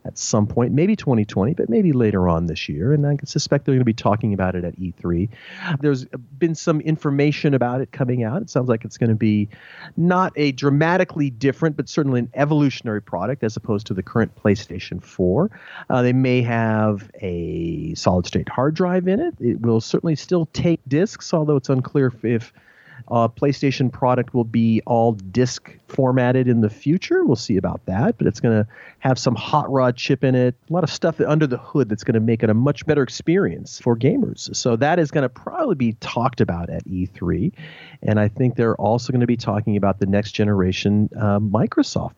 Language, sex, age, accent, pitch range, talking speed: English, male, 40-59, American, 115-150 Hz, 205 wpm